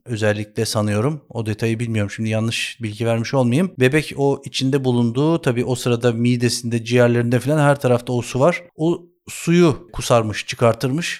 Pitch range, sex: 115-130 Hz, male